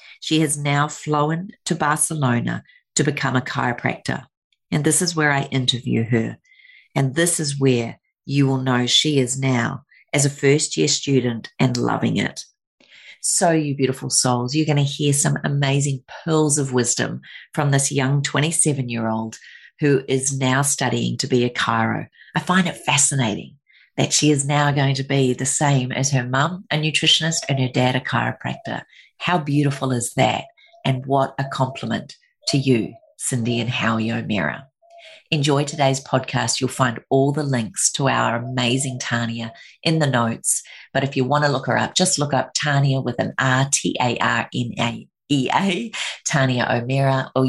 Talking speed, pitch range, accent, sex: 165 wpm, 125-150 Hz, Australian, female